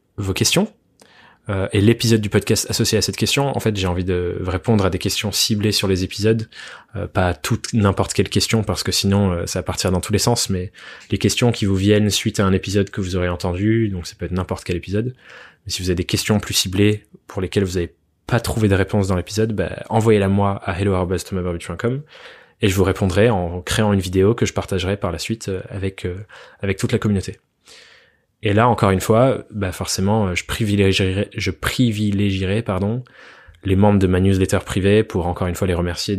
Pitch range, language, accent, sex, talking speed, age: 95-110 Hz, French, French, male, 215 wpm, 20-39